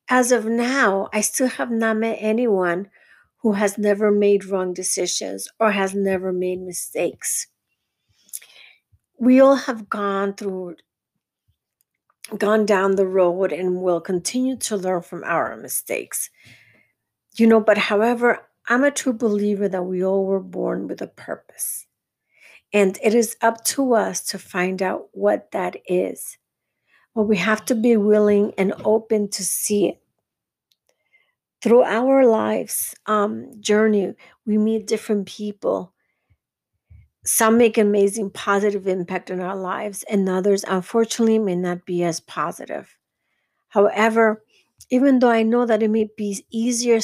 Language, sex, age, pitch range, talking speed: English, female, 50-69, 190-225 Hz, 145 wpm